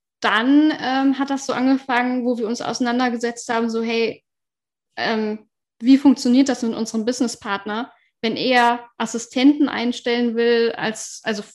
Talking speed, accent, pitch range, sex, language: 140 wpm, German, 225-255 Hz, female, German